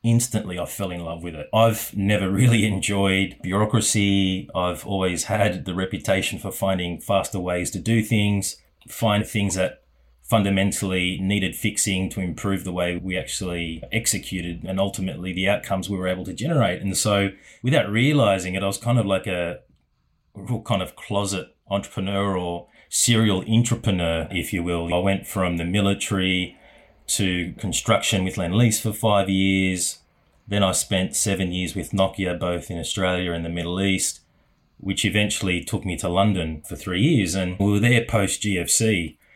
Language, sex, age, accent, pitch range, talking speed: English, male, 30-49, Australian, 90-105 Hz, 165 wpm